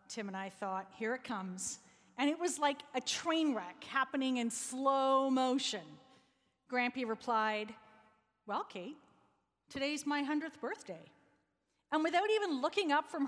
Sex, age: female, 40-59